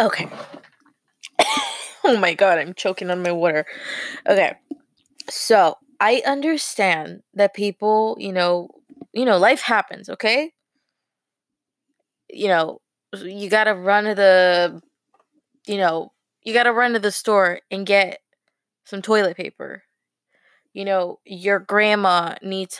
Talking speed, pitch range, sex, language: 130 wpm, 185-245 Hz, female, English